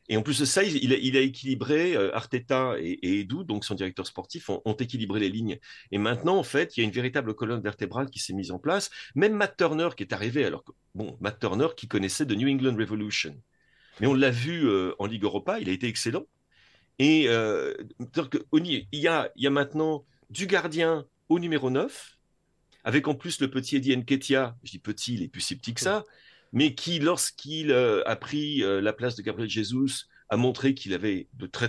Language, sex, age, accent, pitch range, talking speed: French, male, 40-59, French, 110-150 Hz, 220 wpm